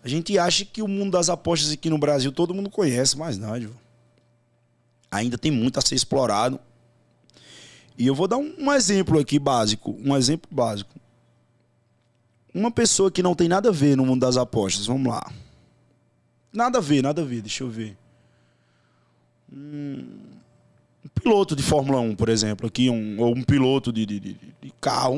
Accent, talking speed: Brazilian, 175 wpm